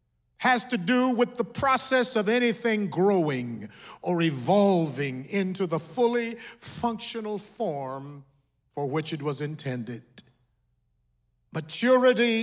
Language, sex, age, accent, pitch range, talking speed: English, male, 50-69, American, 150-205 Hz, 105 wpm